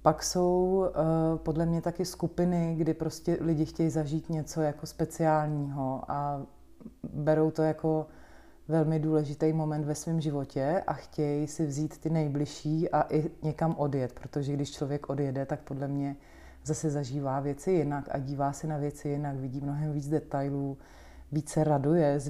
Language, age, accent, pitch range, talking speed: Czech, 30-49, native, 145-160 Hz, 160 wpm